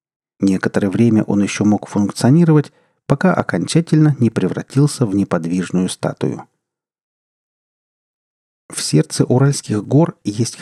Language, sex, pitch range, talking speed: Russian, male, 100-140 Hz, 100 wpm